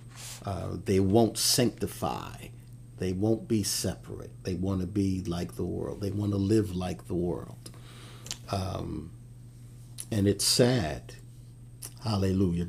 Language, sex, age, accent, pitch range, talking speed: English, male, 50-69, American, 105-125 Hz, 130 wpm